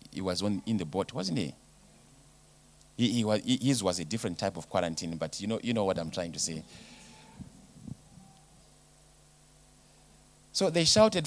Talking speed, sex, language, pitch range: 150 wpm, male, English, 95-130 Hz